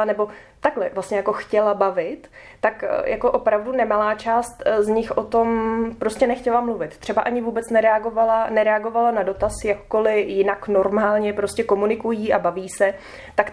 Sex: female